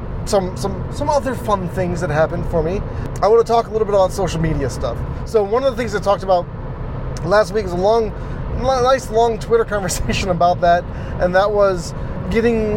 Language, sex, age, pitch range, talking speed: English, male, 30-49, 170-220 Hz, 205 wpm